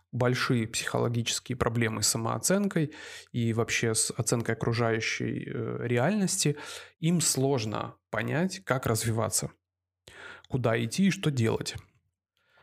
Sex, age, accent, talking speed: male, 20-39, native, 100 wpm